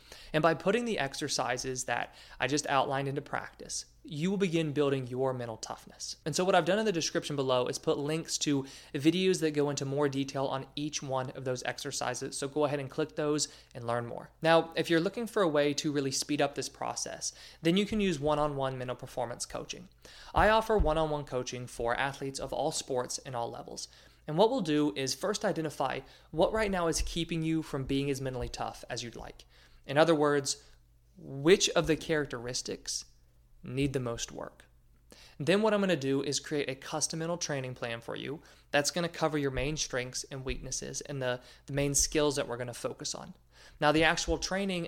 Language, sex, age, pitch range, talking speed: English, male, 20-39, 130-155 Hz, 210 wpm